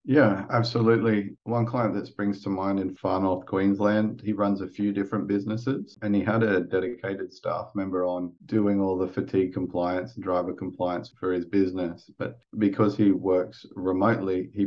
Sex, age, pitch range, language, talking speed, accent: male, 30-49, 90-100 Hz, English, 175 wpm, Australian